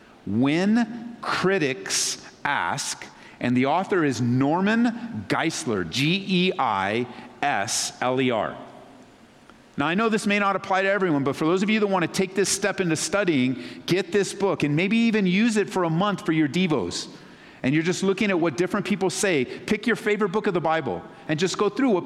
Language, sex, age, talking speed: English, male, 50-69, 180 wpm